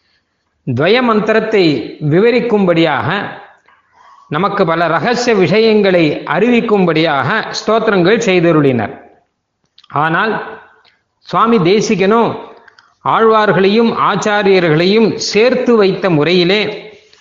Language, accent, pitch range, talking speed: Tamil, native, 180-225 Hz, 65 wpm